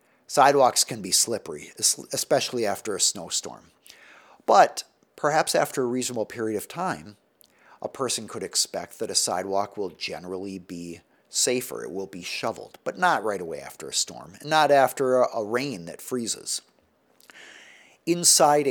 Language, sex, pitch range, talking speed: English, male, 105-145 Hz, 150 wpm